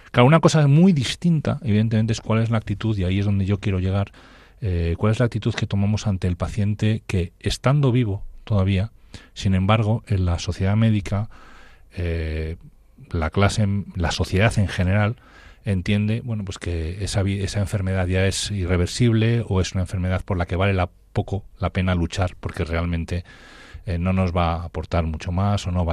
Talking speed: 185 wpm